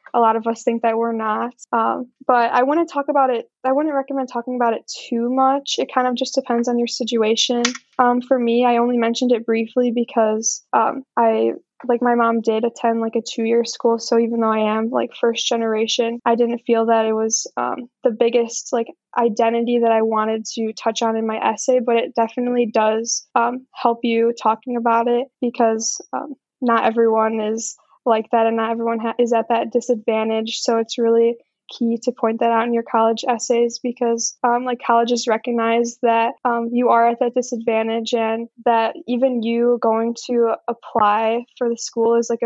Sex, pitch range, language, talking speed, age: female, 225-245 Hz, English, 200 wpm, 10-29